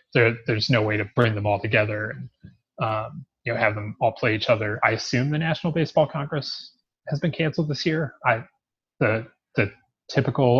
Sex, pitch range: male, 110-135 Hz